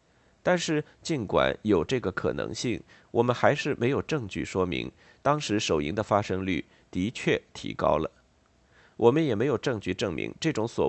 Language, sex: Chinese, male